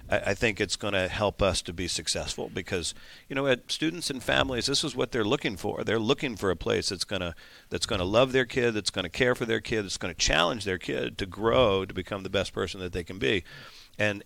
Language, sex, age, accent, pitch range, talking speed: English, male, 50-69, American, 95-115 Hz, 255 wpm